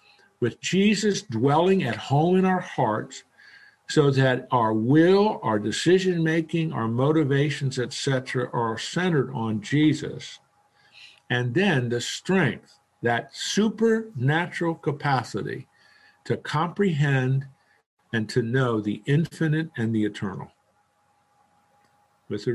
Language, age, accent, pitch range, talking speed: English, 50-69, American, 120-160 Hz, 110 wpm